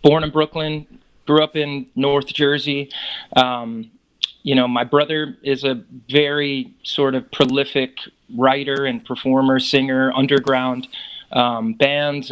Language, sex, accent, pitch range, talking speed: English, male, American, 130-150 Hz, 125 wpm